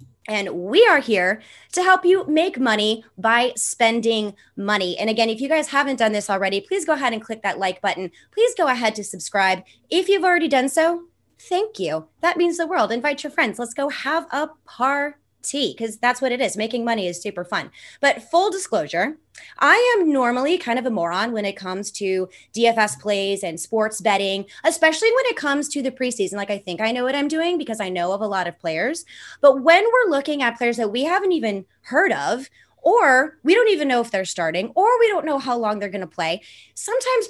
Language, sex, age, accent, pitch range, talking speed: English, female, 30-49, American, 195-305 Hz, 220 wpm